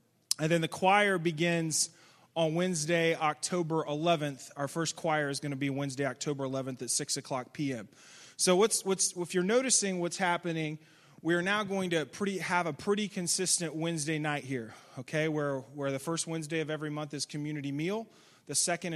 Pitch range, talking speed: 150-185 Hz, 175 wpm